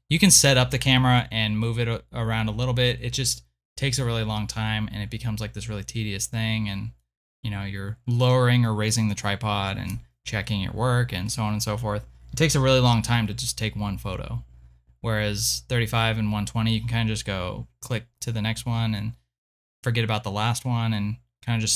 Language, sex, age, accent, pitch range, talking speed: English, male, 20-39, American, 100-120 Hz, 230 wpm